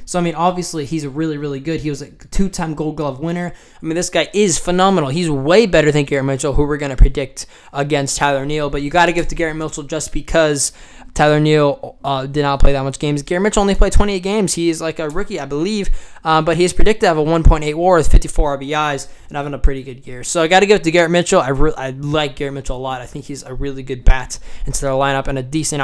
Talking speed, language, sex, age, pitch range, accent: 265 wpm, English, male, 10-29, 140-175 Hz, American